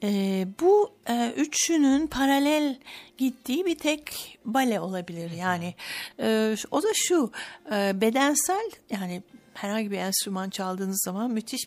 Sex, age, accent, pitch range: female, 60-79, native, 185-235 Hz